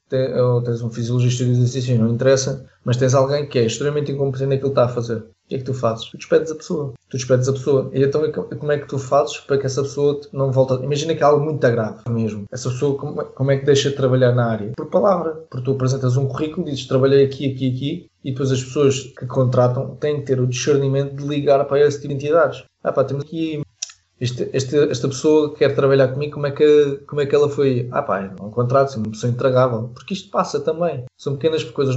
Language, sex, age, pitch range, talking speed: Portuguese, male, 20-39, 125-145 Hz, 245 wpm